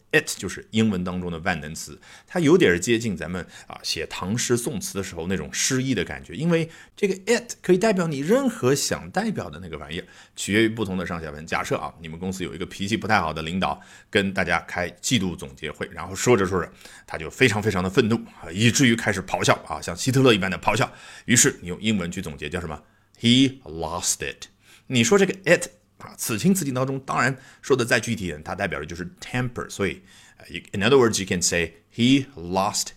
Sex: male